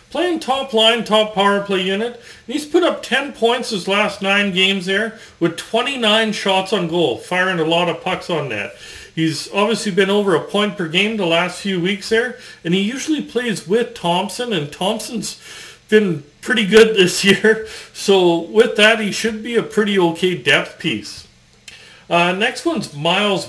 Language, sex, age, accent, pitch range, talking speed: English, male, 40-59, American, 180-230 Hz, 180 wpm